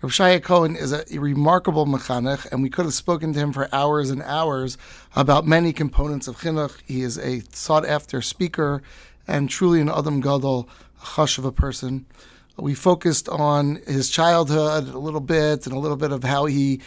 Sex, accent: male, American